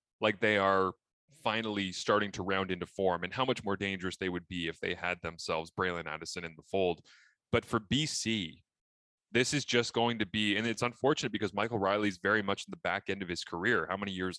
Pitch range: 95-115 Hz